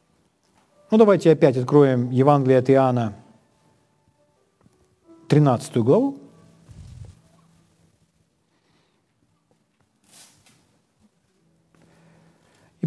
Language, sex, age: Ukrainian, male, 50-69